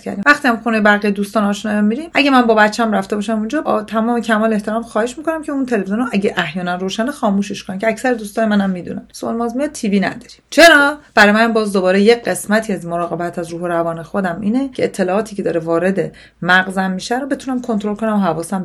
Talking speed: 210 wpm